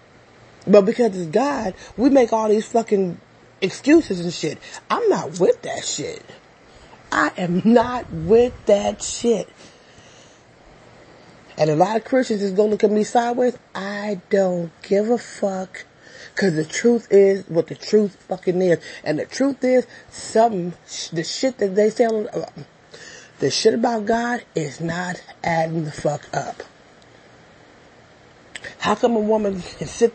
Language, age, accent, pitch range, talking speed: English, 30-49, American, 175-230 Hz, 150 wpm